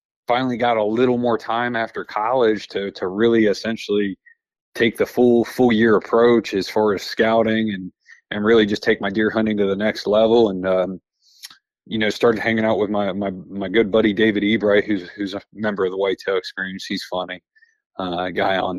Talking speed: 200 wpm